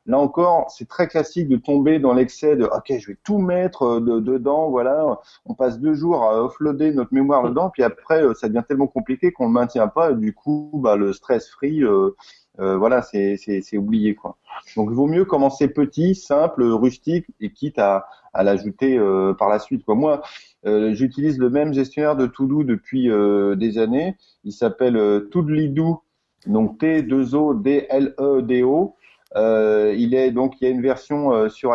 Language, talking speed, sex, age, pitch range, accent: French, 195 wpm, male, 30-49, 110-150 Hz, French